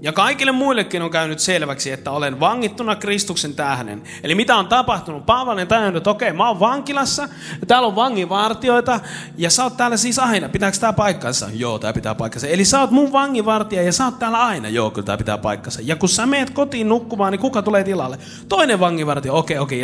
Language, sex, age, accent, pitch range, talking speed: Finnish, male, 30-49, native, 150-230 Hz, 215 wpm